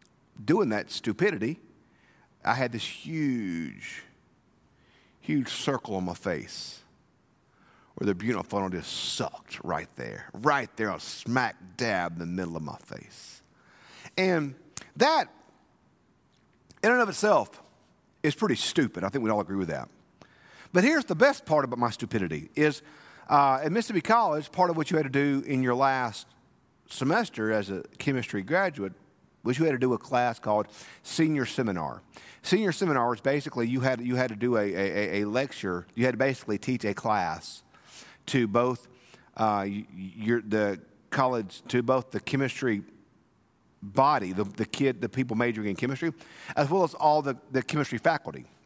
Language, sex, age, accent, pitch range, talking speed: English, male, 50-69, American, 110-150 Hz, 165 wpm